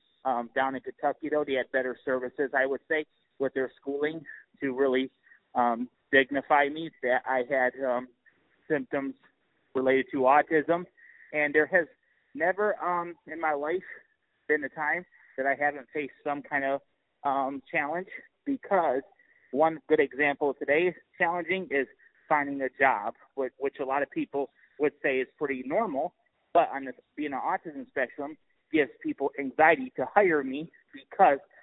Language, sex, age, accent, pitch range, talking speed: English, male, 30-49, American, 135-160 Hz, 160 wpm